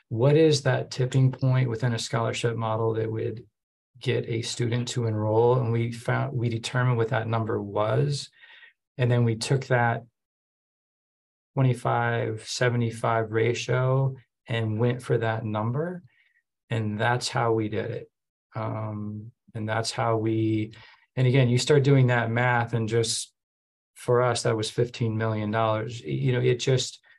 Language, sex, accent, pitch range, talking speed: English, male, American, 110-125 Hz, 150 wpm